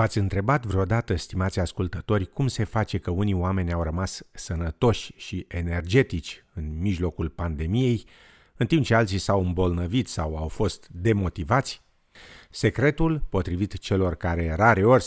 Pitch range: 90-115 Hz